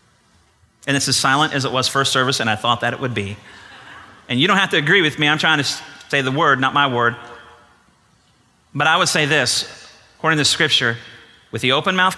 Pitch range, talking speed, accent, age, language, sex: 120-155 Hz, 220 wpm, American, 30-49, English, male